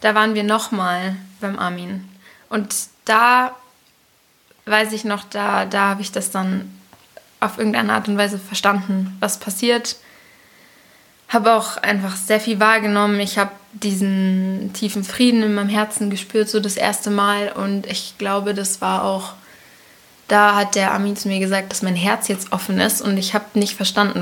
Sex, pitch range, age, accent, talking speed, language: female, 195-220 Hz, 20-39, German, 170 wpm, German